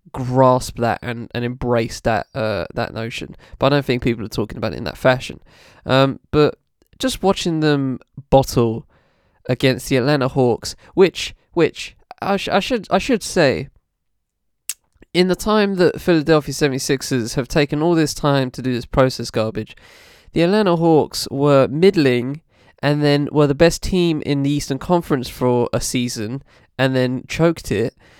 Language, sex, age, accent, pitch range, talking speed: English, male, 20-39, British, 120-160 Hz, 165 wpm